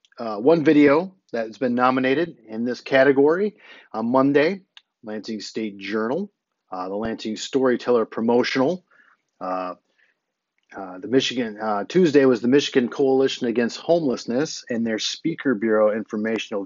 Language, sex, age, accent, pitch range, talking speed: English, male, 40-59, American, 110-140 Hz, 135 wpm